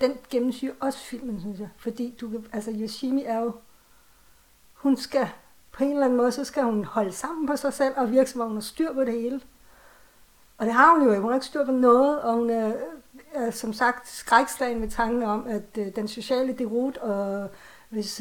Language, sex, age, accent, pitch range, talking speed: Danish, female, 60-79, native, 220-260 Hz, 210 wpm